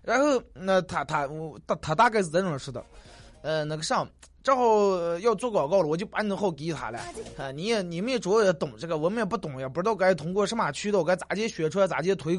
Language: Chinese